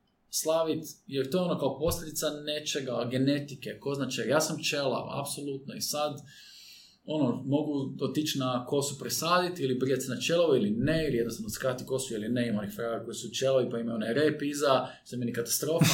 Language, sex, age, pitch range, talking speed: Croatian, male, 20-39, 120-170 Hz, 180 wpm